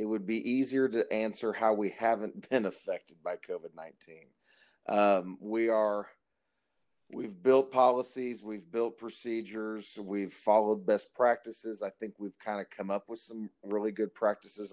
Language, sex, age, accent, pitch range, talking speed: English, male, 40-59, American, 100-115 Hz, 155 wpm